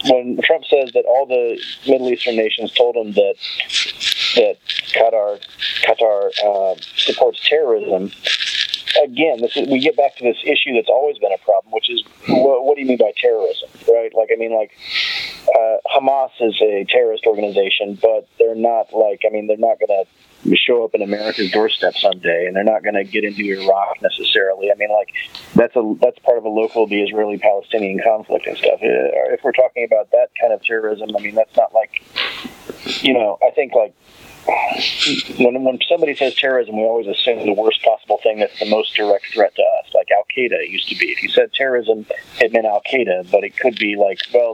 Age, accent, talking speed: 30-49, American, 200 wpm